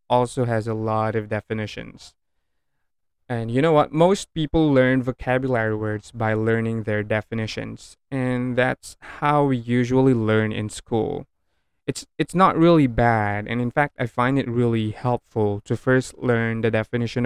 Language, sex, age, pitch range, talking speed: English, male, 20-39, 110-125 Hz, 155 wpm